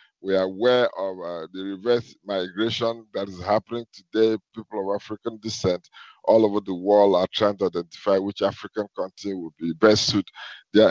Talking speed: 175 wpm